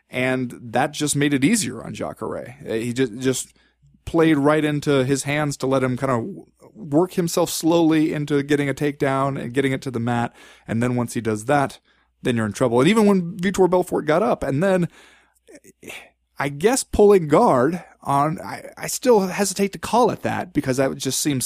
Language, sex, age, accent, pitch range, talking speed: English, male, 20-39, American, 115-150 Hz, 190 wpm